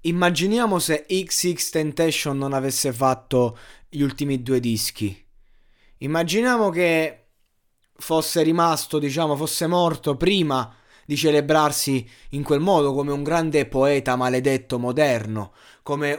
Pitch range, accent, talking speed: 125-160 Hz, native, 115 wpm